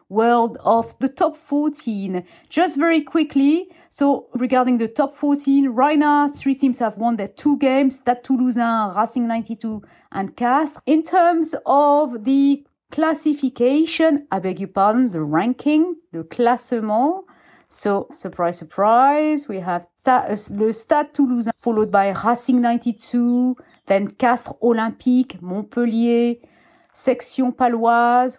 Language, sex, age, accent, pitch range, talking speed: English, female, 40-59, French, 225-285 Hz, 125 wpm